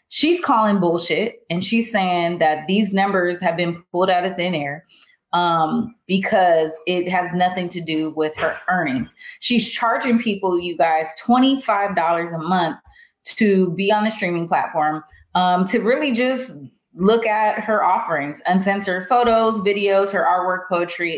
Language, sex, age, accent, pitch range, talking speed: English, female, 20-39, American, 170-230 Hz, 155 wpm